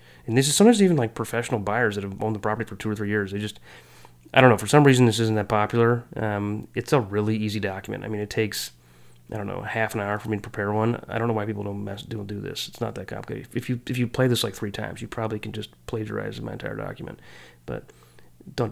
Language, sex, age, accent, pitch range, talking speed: English, male, 30-49, American, 105-120 Hz, 265 wpm